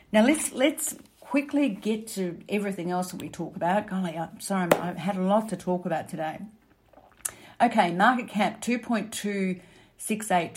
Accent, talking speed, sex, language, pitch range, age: Australian, 155 wpm, female, English, 175-210 Hz, 50-69